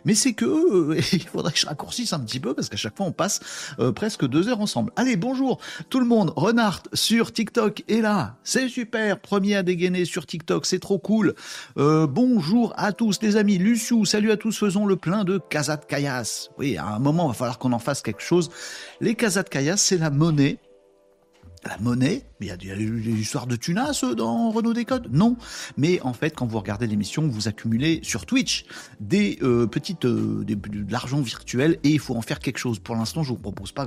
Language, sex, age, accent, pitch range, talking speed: French, male, 50-69, French, 130-205 Hz, 225 wpm